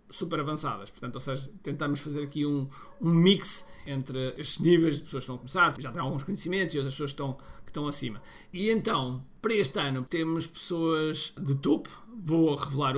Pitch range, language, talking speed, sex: 140-175 Hz, Portuguese, 200 wpm, male